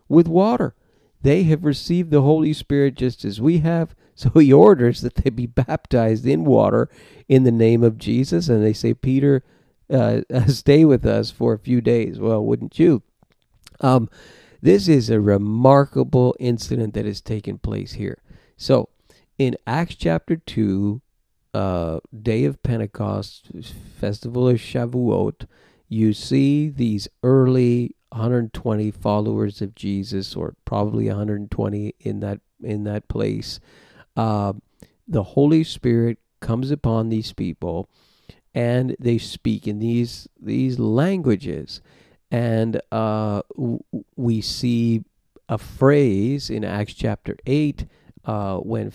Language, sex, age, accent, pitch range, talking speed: English, male, 50-69, American, 105-130 Hz, 130 wpm